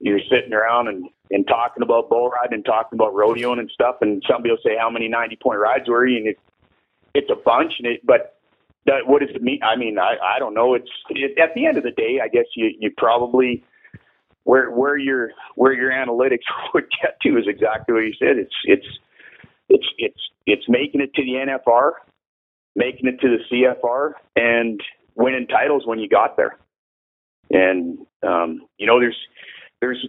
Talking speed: 200 wpm